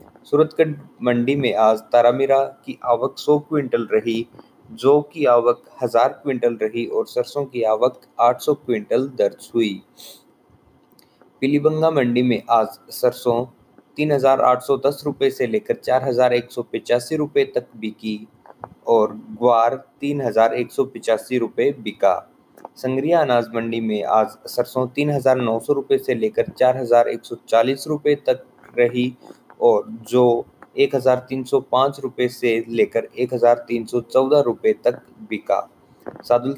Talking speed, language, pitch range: 100 wpm, Hindi, 115-140 Hz